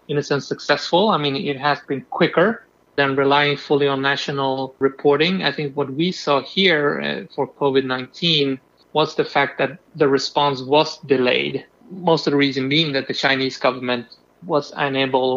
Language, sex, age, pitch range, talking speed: English, male, 30-49, 135-155 Hz, 170 wpm